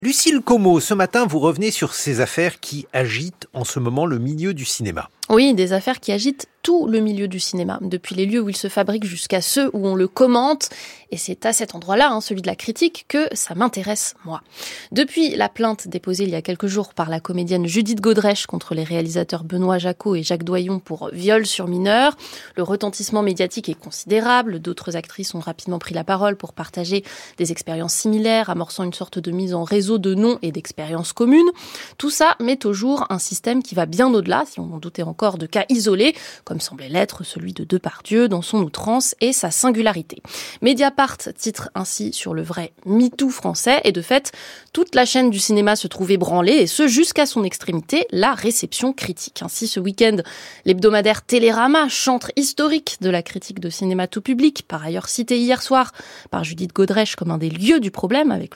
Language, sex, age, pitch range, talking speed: French, female, 30-49, 180-245 Hz, 205 wpm